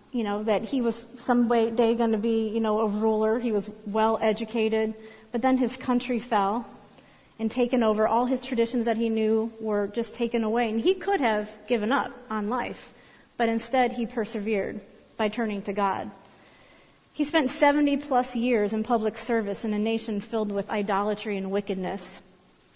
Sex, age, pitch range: female, 40-59, 210-245 Hz